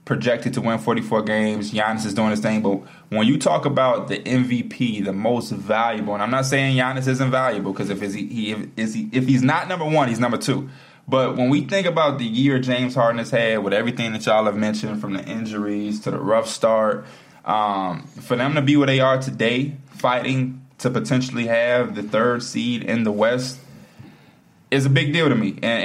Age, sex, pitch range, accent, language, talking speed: 20-39, male, 110-135 Hz, American, English, 210 wpm